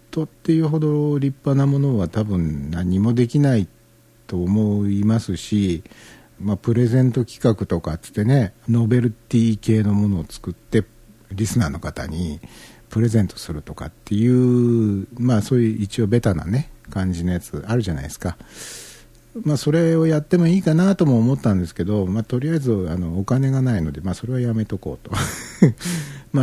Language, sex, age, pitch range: Japanese, male, 60-79, 95-140 Hz